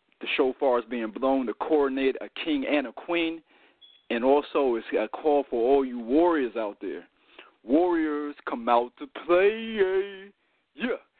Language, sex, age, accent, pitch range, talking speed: English, male, 40-59, American, 115-140 Hz, 155 wpm